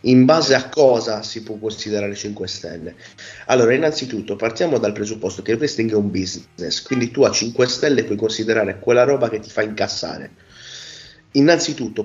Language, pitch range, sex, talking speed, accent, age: Italian, 110-130 Hz, male, 170 wpm, native, 30-49